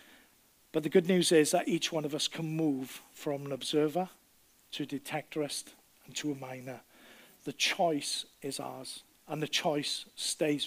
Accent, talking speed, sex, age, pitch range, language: British, 170 wpm, male, 50-69, 145-170 Hz, English